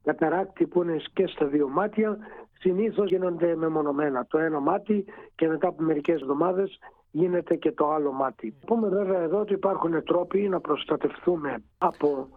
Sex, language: male, Greek